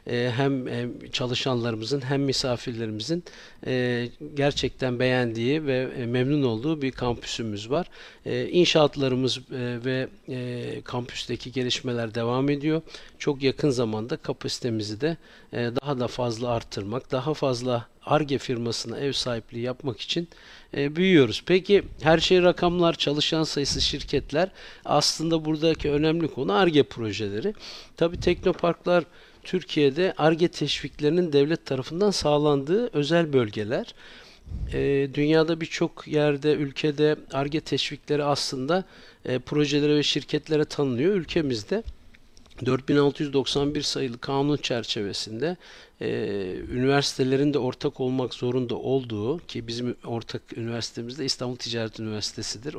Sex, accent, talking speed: male, native, 105 wpm